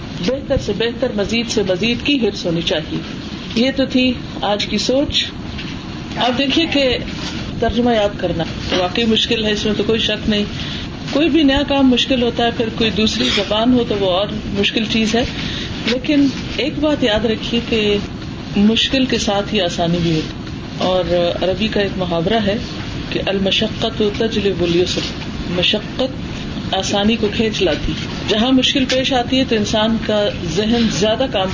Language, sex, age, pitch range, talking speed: Urdu, female, 40-59, 205-250 Hz, 170 wpm